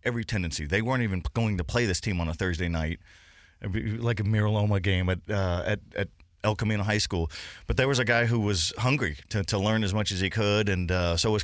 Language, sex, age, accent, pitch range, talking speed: English, male, 40-59, American, 90-110 Hz, 250 wpm